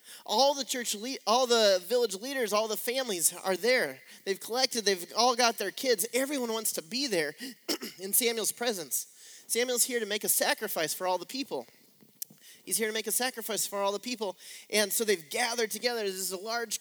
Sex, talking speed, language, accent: male, 205 wpm, English, American